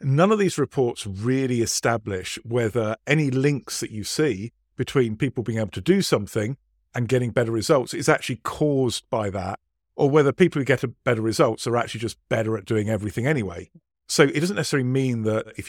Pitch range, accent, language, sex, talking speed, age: 105-135 Hz, British, English, male, 190 wpm, 50-69